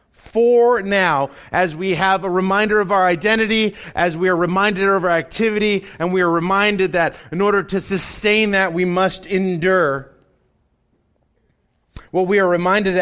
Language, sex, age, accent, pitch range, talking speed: English, male, 30-49, American, 185-235 Hz, 155 wpm